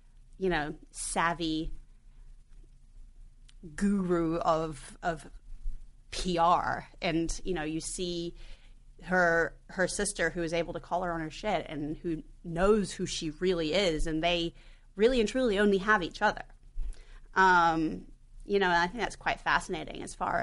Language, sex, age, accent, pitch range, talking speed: English, female, 30-49, American, 165-190 Hz, 145 wpm